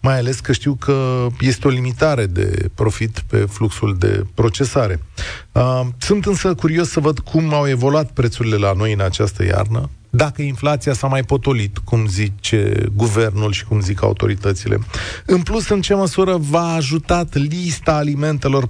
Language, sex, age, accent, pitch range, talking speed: Romanian, male, 30-49, native, 105-155 Hz, 160 wpm